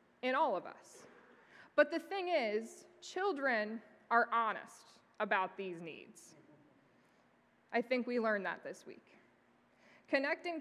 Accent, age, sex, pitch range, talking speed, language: American, 20-39, female, 205-270 Hz, 125 wpm, English